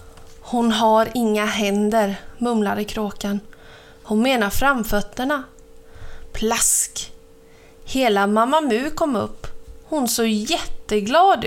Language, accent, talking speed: Swedish, native, 95 wpm